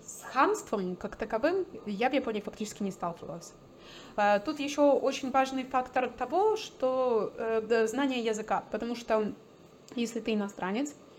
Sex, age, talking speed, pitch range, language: female, 20-39, 130 wpm, 210-255 Hz, Russian